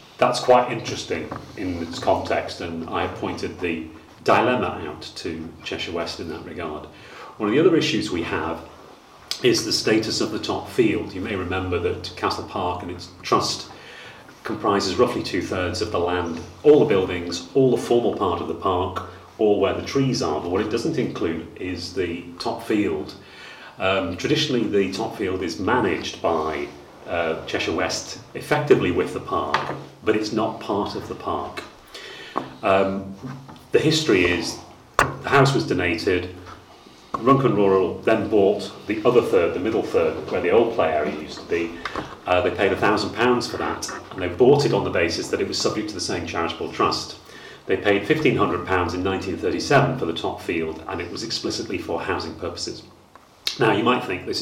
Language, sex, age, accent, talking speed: English, male, 30-49, British, 185 wpm